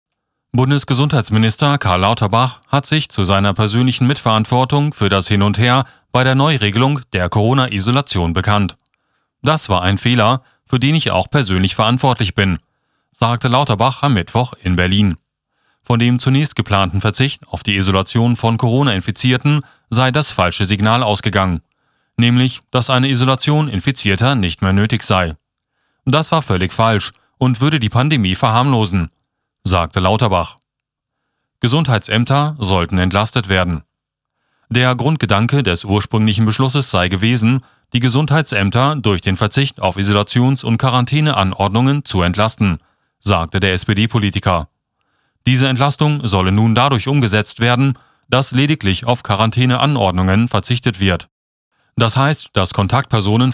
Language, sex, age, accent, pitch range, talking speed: German, male, 30-49, German, 100-130 Hz, 130 wpm